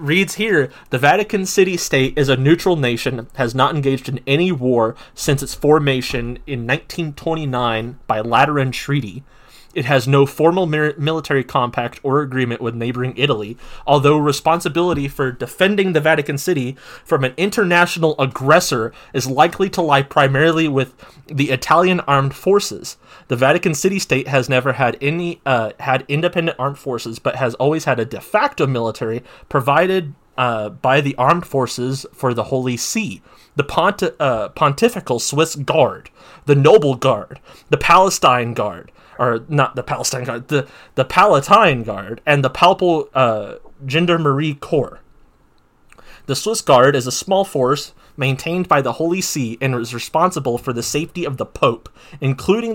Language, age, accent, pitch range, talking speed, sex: English, 30-49, American, 125-160 Hz, 155 wpm, male